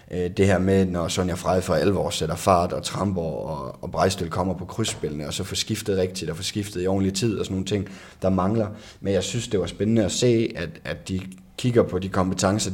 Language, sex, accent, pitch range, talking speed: Danish, male, native, 90-105 Hz, 230 wpm